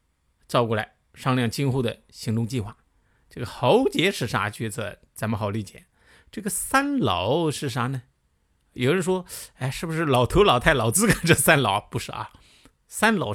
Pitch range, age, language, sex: 120-190 Hz, 50-69, Chinese, male